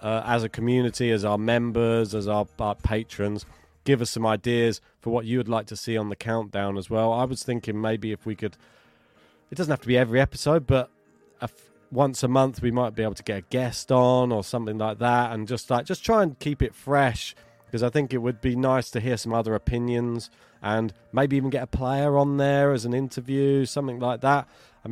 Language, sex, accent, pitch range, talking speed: English, male, British, 110-125 Hz, 225 wpm